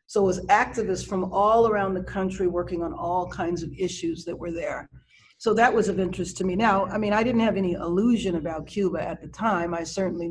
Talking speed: 235 wpm